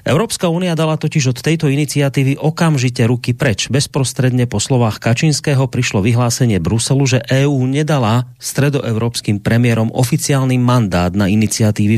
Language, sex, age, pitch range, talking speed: Slovak, male, 30-49, 110-135 Hz, 130 wpm